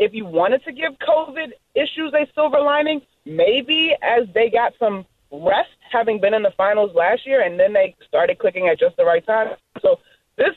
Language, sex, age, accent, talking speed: English, female, 20-39, American, 200 wpm